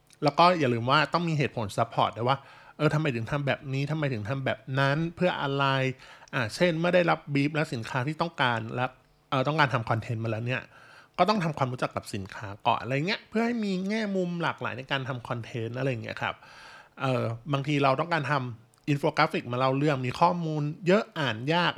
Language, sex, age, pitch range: Thai, male, 20-39, 120-150 Hz